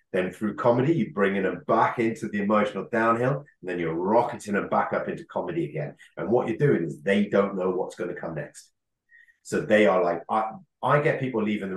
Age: 30-49